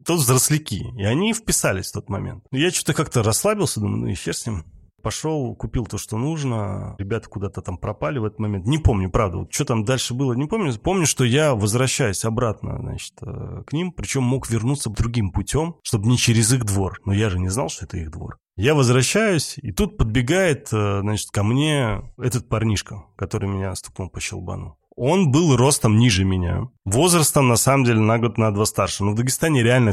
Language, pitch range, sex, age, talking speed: Russian, 105-145 Hz, male, 30-49, 195 wpm